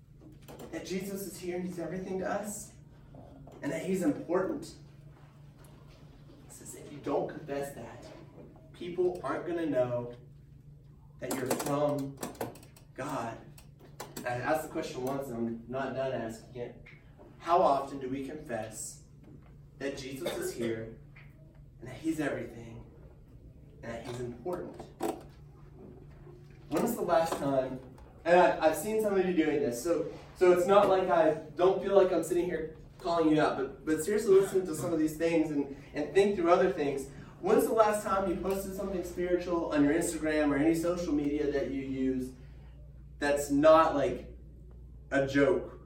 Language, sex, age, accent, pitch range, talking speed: English, male, 30-49, American, 140-175 Hz, 160 wpm